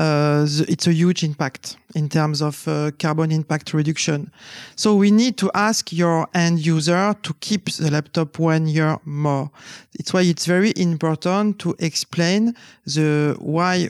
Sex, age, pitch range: male, 40-59, 150-180 Hz